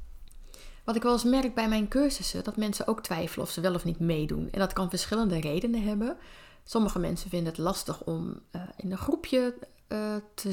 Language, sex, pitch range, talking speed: Dutch, female, 165-215 Hz, 195 wpm